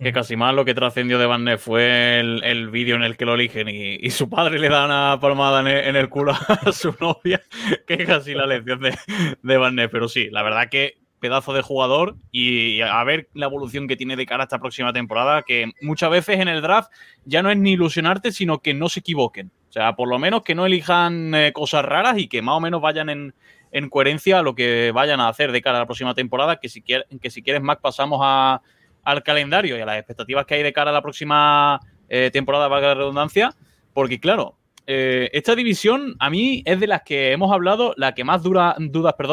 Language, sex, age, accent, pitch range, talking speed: Spanish, male, 20-39, Spanish, 125-165 Hz, 230 wpm